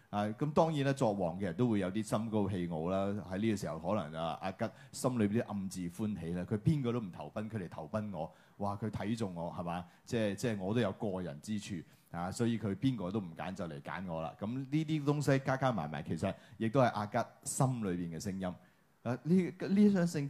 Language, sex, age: Chinese, male, 30-49